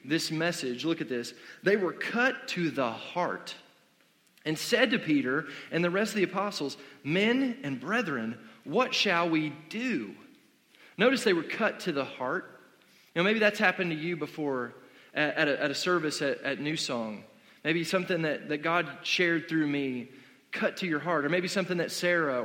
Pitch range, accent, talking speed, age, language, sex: 155-195 Hz, American, 185 wpm, 30-49, English, male